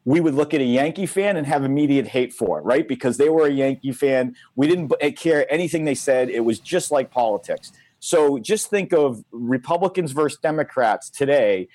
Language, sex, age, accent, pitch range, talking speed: English, male, 40-59, American, 120-150 Hz, 200 wpm